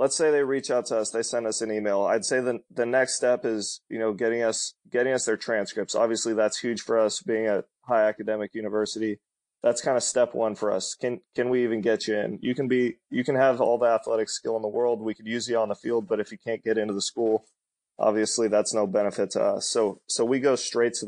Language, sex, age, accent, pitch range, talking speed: English, male, 20-39, American, 110-120 Hz, 260 wpm